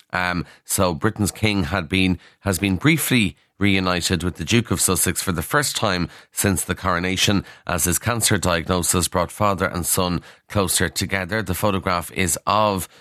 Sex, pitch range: male, 90-105 Hz